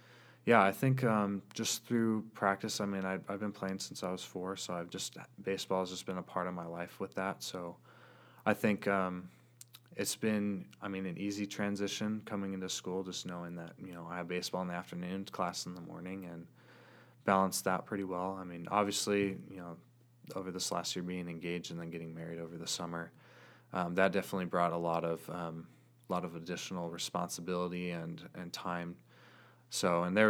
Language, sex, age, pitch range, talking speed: English, male, 20-39, 85-95 Hz, 200 wpm